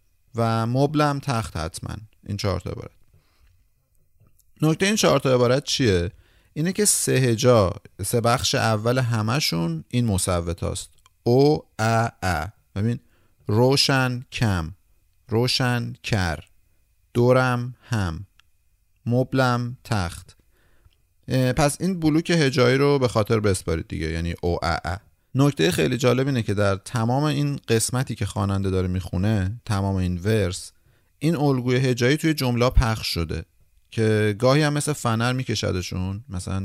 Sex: male